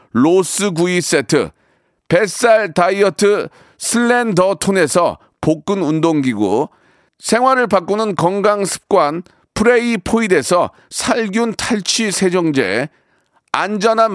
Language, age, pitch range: Korean, 40-59, 175-225 Hz